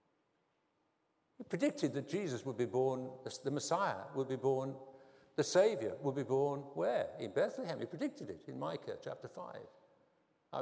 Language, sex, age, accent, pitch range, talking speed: English, male, 60-79, British, 130-180 Hz, 155 wpm